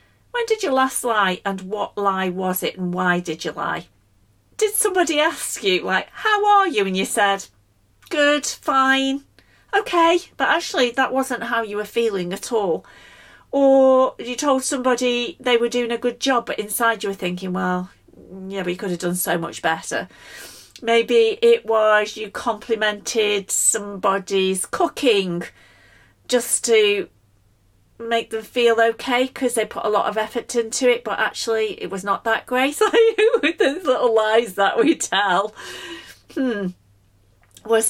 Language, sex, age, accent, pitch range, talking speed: English, female, 40-59, British, 190-265 Hz, 160 wpm